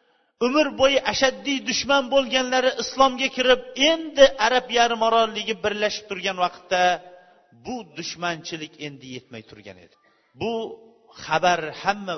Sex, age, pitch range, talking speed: male, 40-59, 170-265 Hz, 115 wpm